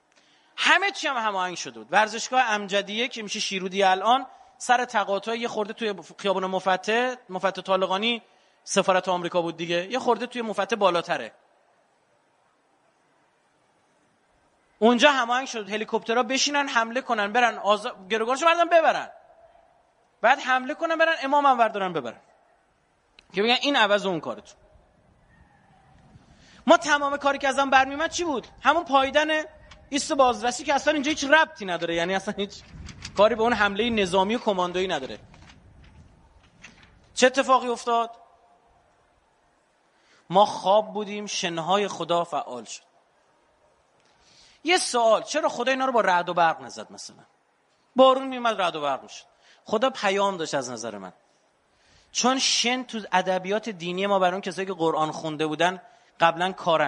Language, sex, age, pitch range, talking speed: Persian, male, 30-49, 185-265 Hz, 145 wpm